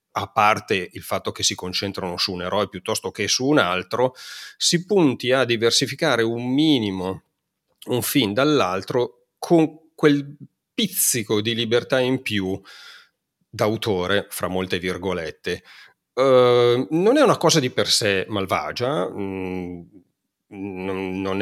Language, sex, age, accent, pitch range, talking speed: Italian, male, 40-59, native, 95-120 Hz, 125 wpm